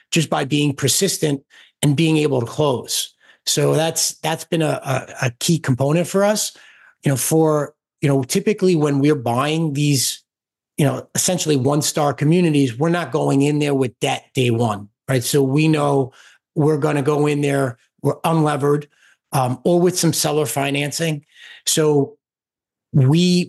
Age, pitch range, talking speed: 30-49, 135-155 Hz, 165 wpm